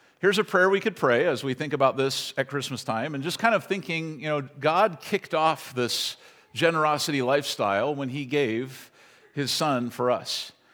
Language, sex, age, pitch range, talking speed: English, male, 50-69, 125-160 Hz, 190 wpm